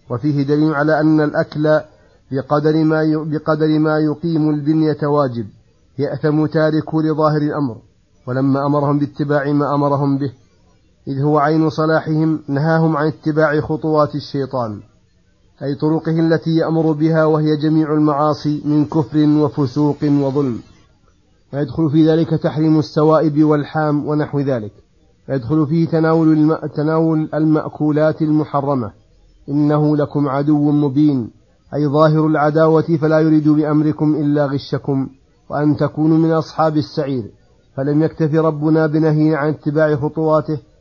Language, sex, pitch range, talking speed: Arabic, male, 140-155 Hz, 115 wpm